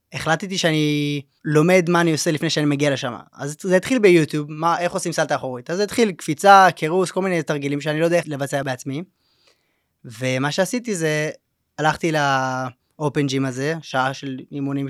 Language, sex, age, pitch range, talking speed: Hebrew, male, 20-39, 140-170 Hz, 175 wpm